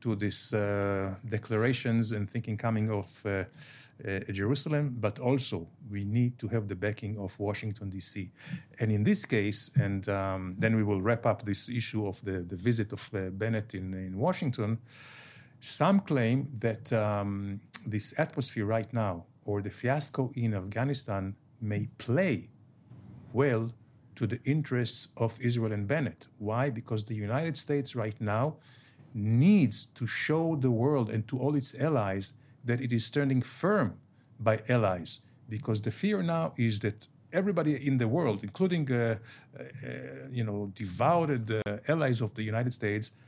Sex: male